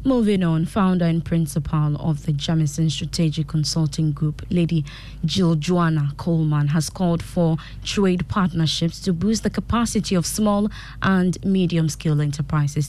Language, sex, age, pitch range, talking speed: English, female, 20-39, 150-180 Hz, 135 wpm